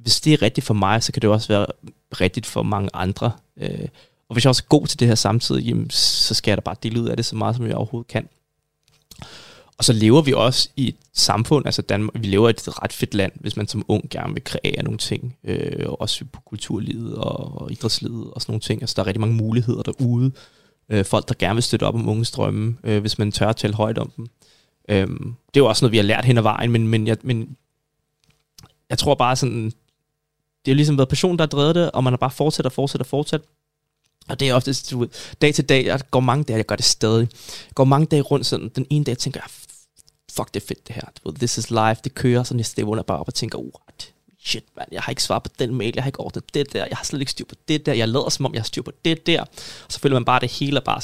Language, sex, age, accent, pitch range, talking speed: Danish, male, 20-39, native, 110-140 Hz, 265 wpm